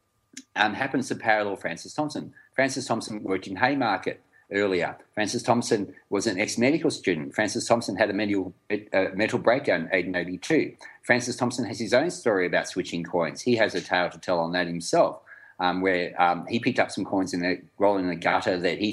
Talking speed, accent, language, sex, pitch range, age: 195 wpm, Australian, English, male, 90-115 Hz, 40-59